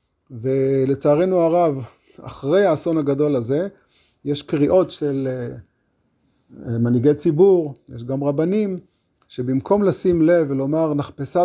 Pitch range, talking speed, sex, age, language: 125-150 Hz, 100 wpm, male, 30-49, Hebrew